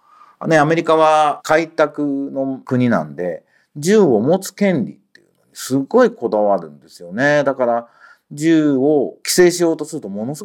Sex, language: male, Japanese